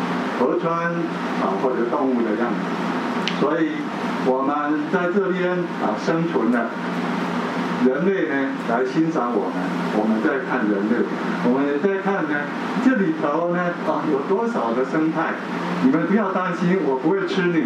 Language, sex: Chinese, male